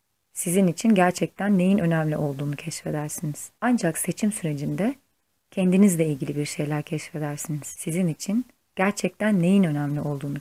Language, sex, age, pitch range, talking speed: Turkish, female, 30-49, 150-195 Hz, 120 wpm